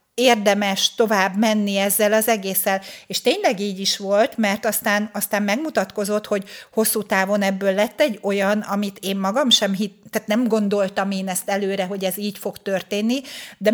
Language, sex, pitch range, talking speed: Hungarian, female, 200-240 Hz, 170 wpm